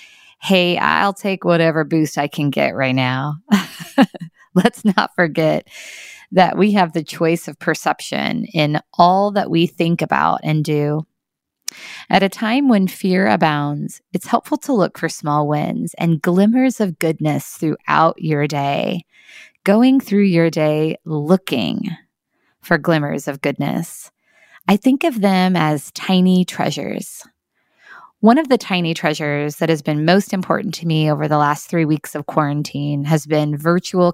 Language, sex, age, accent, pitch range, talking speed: English, female, 20-39, American, 150-195 Hz, 150 wpm